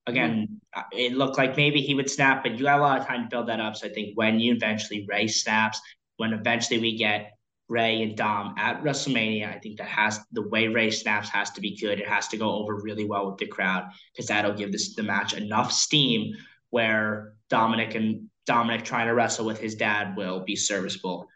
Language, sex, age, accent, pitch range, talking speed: English, male, 10-29, American, 110-145 Hz, 220 wpm